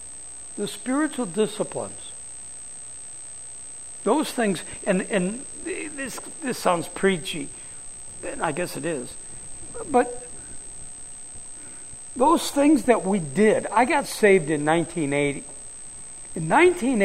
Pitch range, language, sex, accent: 185-275 Hz, English, male, American